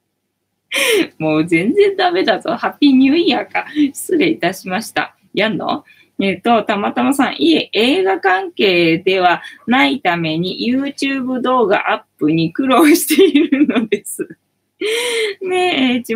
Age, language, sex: 20-39, Japanese, female